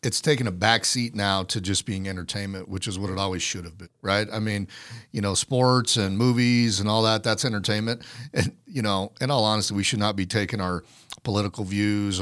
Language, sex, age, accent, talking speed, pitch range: English, male, 40-59, American, 215 wpm, 95-115 Hz